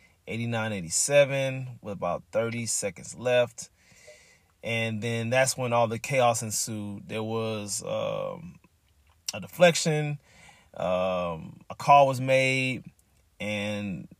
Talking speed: 105 wpm